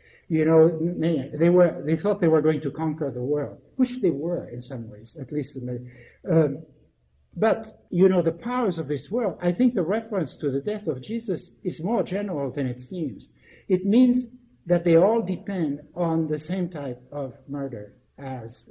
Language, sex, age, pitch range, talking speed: English, male, 60-79, 140-185 Hz, 190 wpm